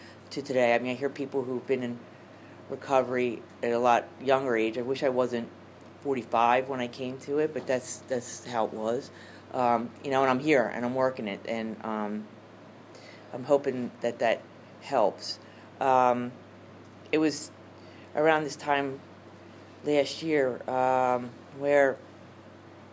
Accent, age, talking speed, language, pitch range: American, 40-59, 155 wpm, English, 115-150 Hz